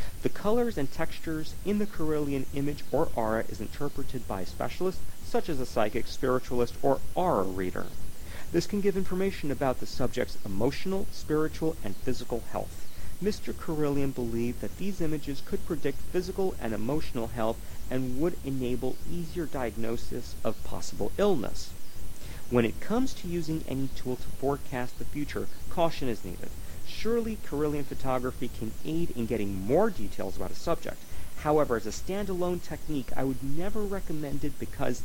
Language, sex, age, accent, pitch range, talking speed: English, male, 40-59, American, 110-160 Hz, 160 wpm